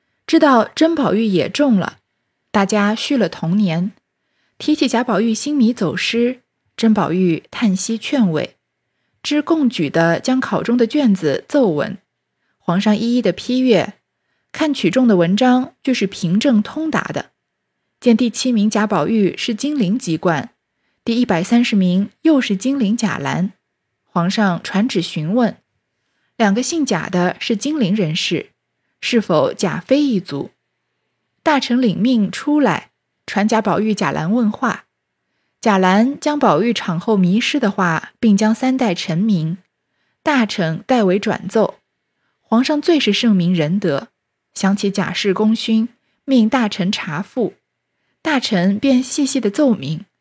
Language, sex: Chinese, female